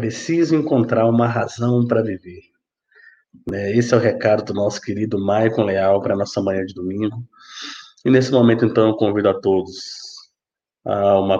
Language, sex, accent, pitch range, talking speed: Portuguese, male, Brazilian, 95-115 Hz, 165 wpm